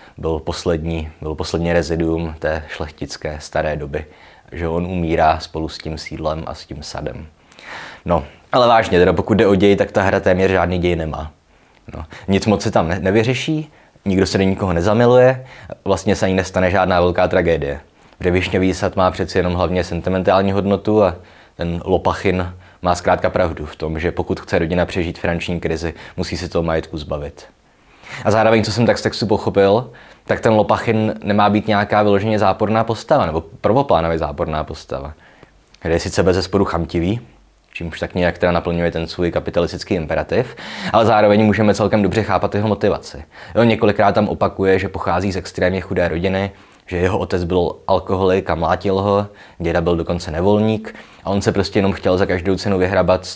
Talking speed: 175 wpm